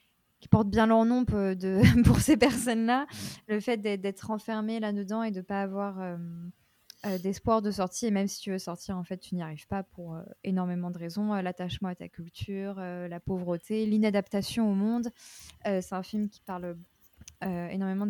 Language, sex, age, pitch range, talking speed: French, female, 20-39, 185-215 Hz, 200 wpm